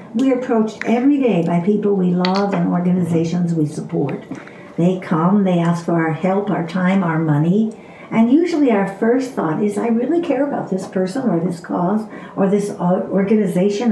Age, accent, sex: 60-79, American, female